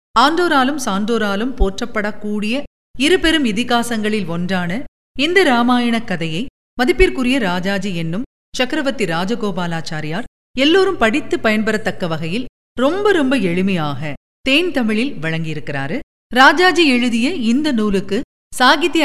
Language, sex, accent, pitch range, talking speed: Tamil, female, native, 185-265 Hz, 90 wpm